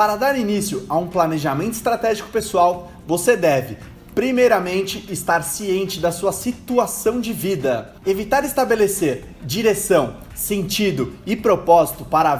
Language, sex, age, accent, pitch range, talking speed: Portuguese, male, 30-49, Brazilian, 165-215 Hz, 125 wpm